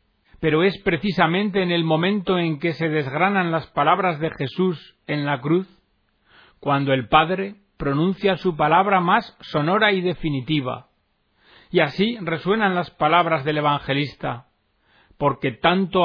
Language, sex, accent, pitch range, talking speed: Spanish, male, Spanish, 140-185 Hz, 135 wpm